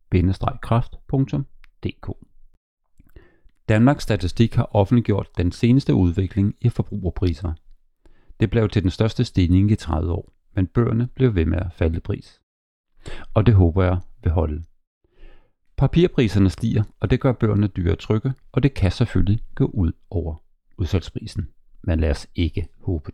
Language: Danish